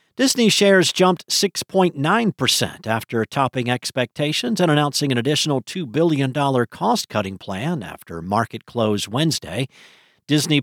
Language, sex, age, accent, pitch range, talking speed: English, male, 50-69, American, 125-170 Hz, 115 wpm